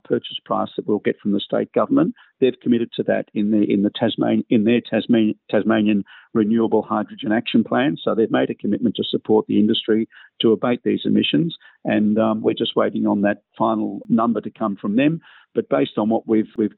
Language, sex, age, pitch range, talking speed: English, male, 50-69, 105-125 Hz, 205 wpm